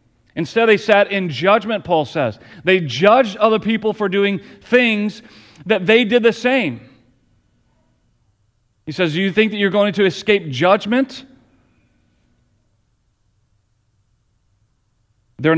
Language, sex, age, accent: English, male, 40-59, American